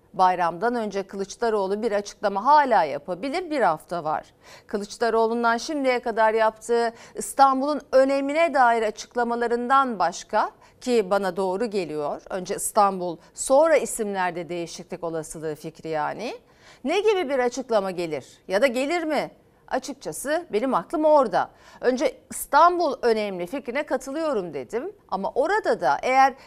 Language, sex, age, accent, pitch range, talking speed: Turkish, female, 50-69, native, 190-280 Hz, 120 wpm